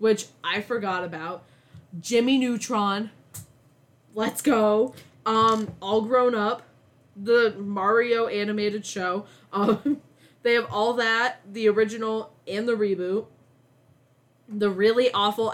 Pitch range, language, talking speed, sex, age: 185-265 Hz, English, 110 wpm, female, 20-39